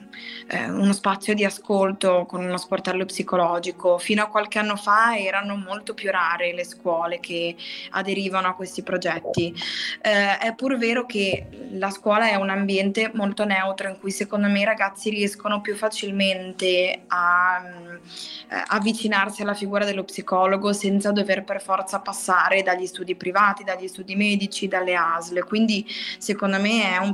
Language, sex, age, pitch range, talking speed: Italian, female, 20-39, 185-210 Hz, 155 wpm